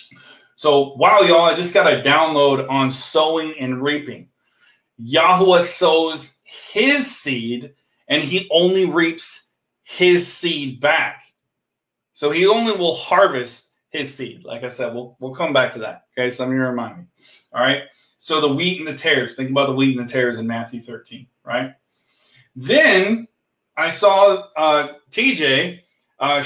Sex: male